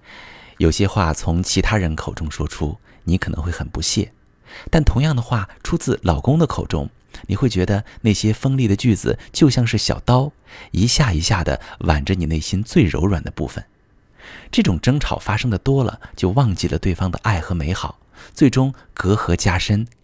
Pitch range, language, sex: 85-115 Hz, Chinese, male